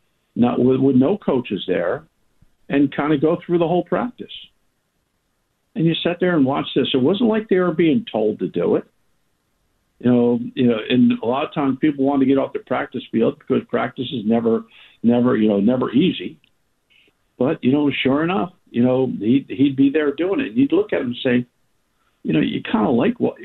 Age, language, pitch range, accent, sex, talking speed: 50-69, English, 125-155 Hz, American, male, 215 wpm